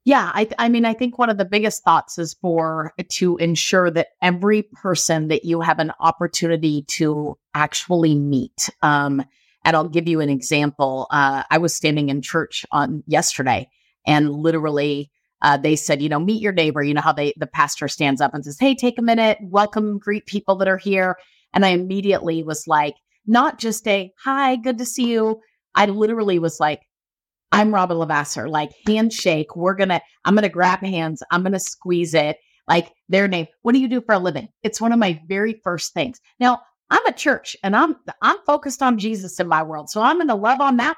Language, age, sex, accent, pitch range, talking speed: English, 30-49, female, American, 155-205 Hz, 210 wpm